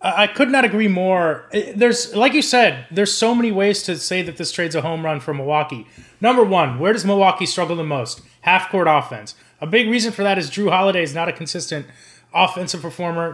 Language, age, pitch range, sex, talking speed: English, 30-49, 165-210 Hz, male, 215 wpm